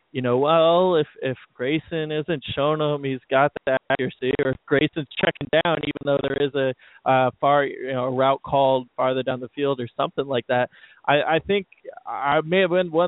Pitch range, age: 130-165 Hz, 20-39